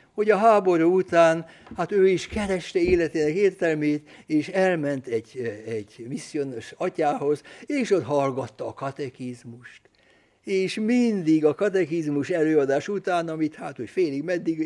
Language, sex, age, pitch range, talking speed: Hungarian, male, 60-79, 140-190 Hz, 130 wpm